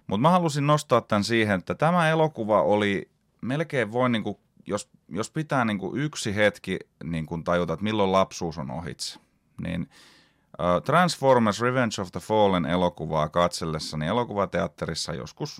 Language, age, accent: Finnish, 30-49, native